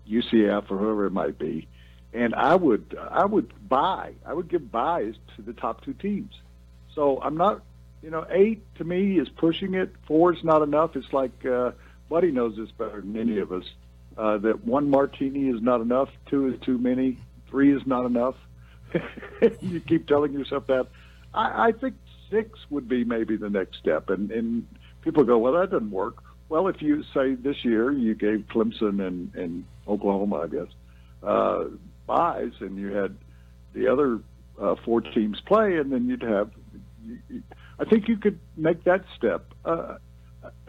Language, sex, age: English, male, 60-79